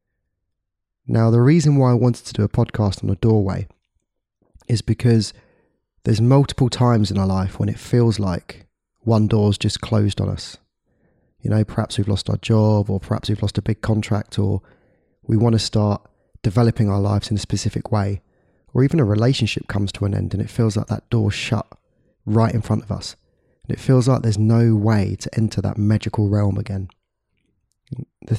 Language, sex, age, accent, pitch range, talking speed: English, male, 20-39, British, 100-120 Hz, 190 wpm